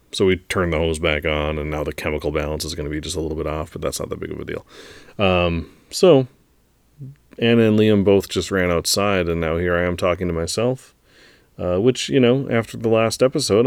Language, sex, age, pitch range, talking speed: English, male, 30-49, 85-110 Hz, 235 wpm